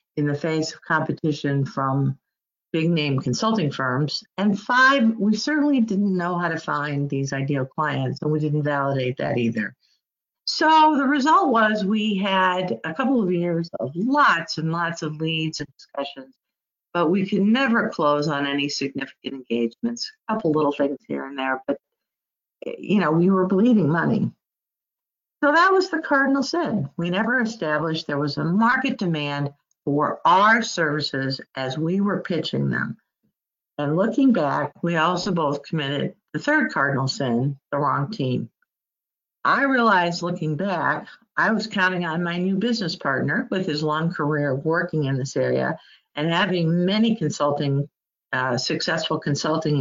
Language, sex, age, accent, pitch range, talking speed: English, female, 50-69, American, 140-210 Hz, 160 wpm